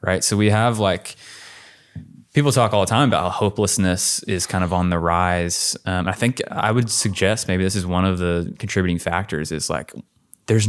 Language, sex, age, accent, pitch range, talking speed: English, male, 20-39, American, 90-105 Hz, 200 wpm